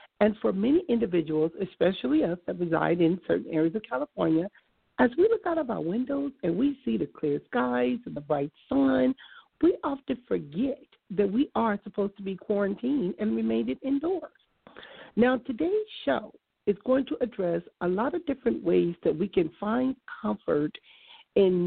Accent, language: American, English